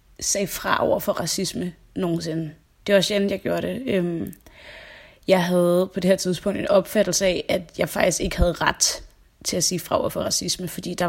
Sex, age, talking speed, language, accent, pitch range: female, 20-39, 195 wpm, Danish, native, 175-200 Hz